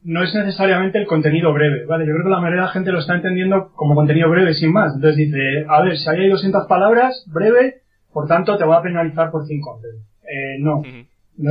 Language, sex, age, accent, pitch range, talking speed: Spanish, male, 30-49, Spanish, 150-185 Hz, 230 wpm